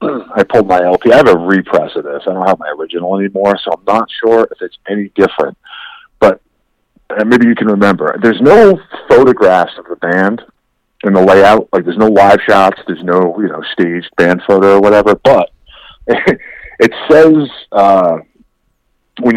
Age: 40-59